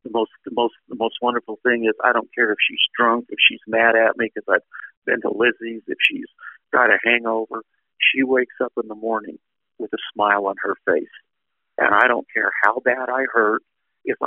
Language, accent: English, American